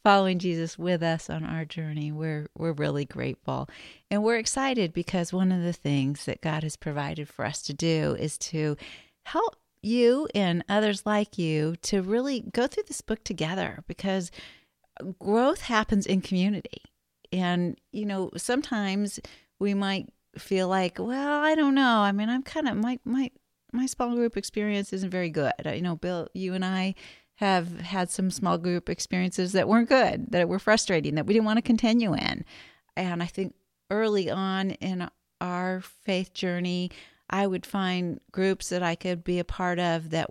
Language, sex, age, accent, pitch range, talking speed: English, female, 40-59, American, 175-215 Hz, 175 wpm